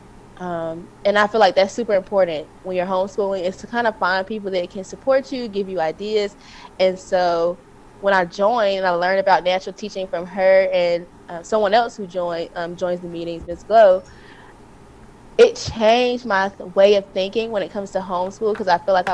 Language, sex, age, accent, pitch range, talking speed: English, female, 20-39, American, 185-240 Hz, 200 wpm